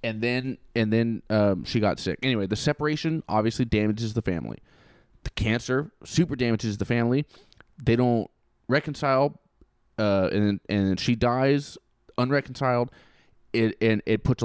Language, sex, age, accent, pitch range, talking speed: English, male, 20-39, American, 105-135 Hz, 150 wpm